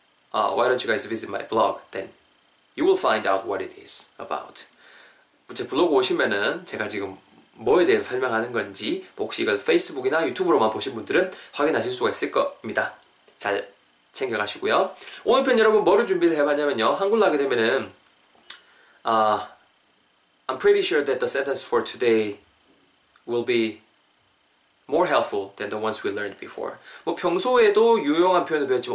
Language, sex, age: Korean, male, 20-39